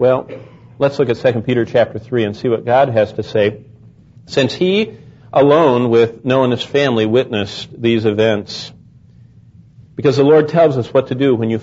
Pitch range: 115-145 Hz